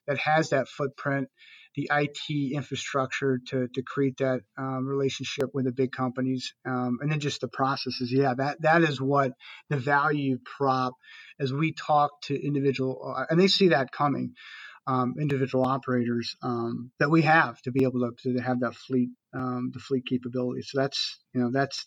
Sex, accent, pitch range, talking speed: male, American, 130-155 Hz, 180 wpm